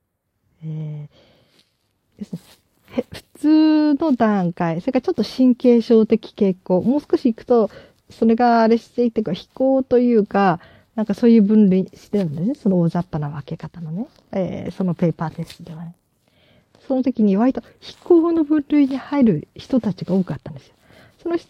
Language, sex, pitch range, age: Japanese, female, 165-250 Hz, 40-59